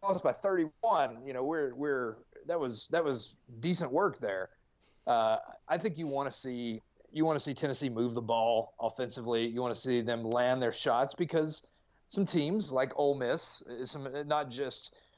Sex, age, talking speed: male, 30-49, 180 wpm